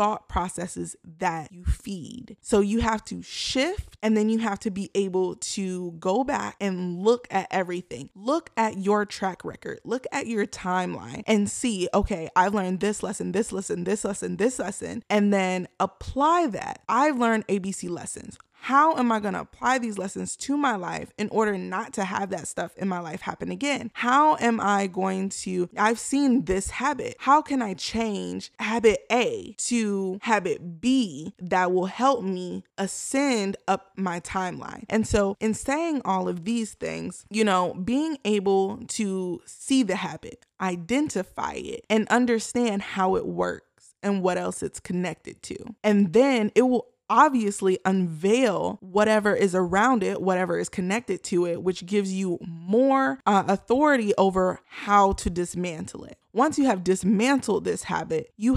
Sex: female